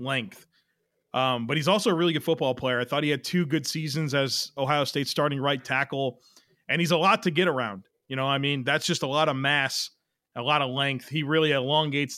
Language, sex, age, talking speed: English, male, 30-49, 235 wpm